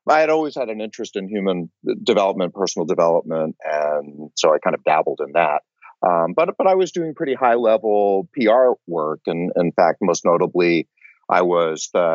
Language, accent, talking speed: English, American, 190 wpm